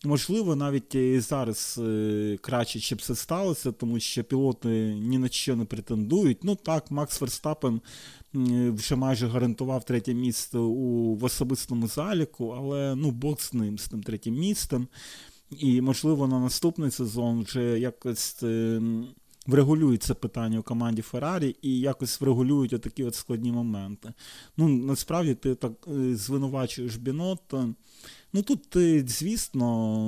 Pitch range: 115-140 Hz